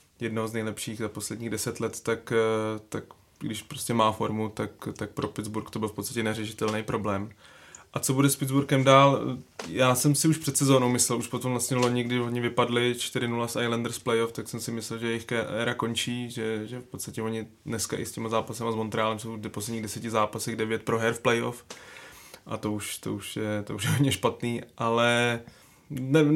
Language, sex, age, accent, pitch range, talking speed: Czech, male, 20-39, native, 115-125 Hz, 205 wpm